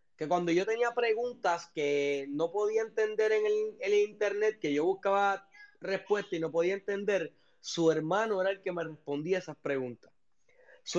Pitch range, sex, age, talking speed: 160-225 Hz, male, 20-39, 175 wpm